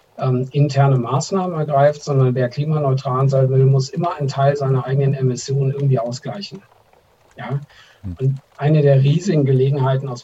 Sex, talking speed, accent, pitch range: male, 145 wpm, German, 130-145 Hz